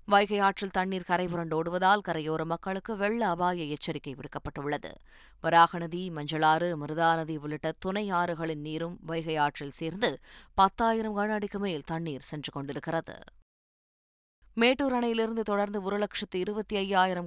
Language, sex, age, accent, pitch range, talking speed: Tamil, female, 20-39, native, 155-195 Hz, 115 wpm